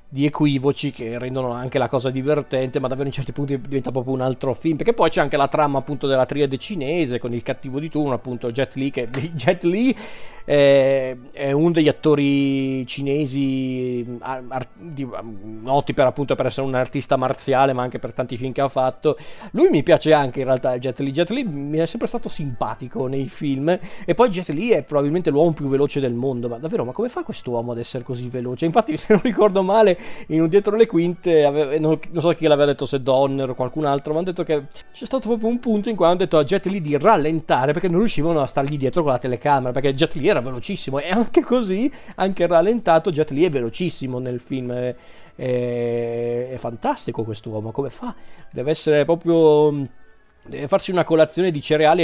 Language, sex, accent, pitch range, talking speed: Italian, male, native, 130-165 Hz, 210 wpm